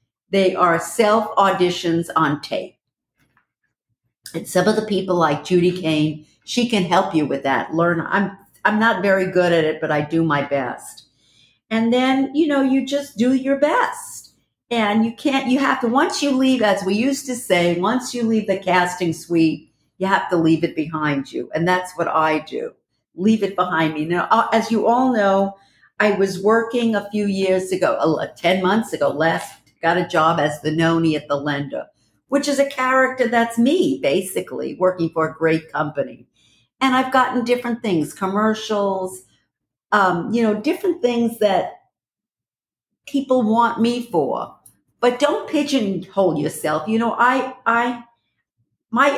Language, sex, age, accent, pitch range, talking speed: English, female, 50-69, American, 165-240 Hz, 170 wpm